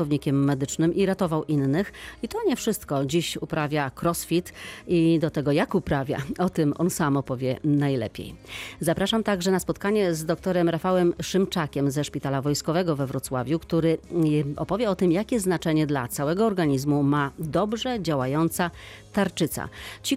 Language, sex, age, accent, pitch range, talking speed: Polish, female, 40-59, native, 140-180 Hz, 145 wpm